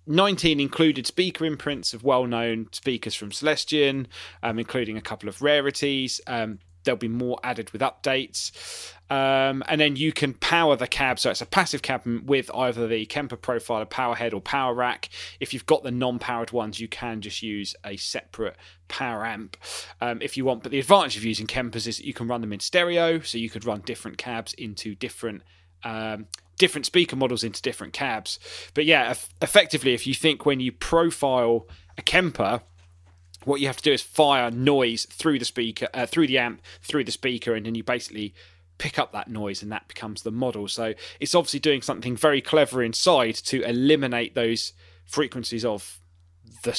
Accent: British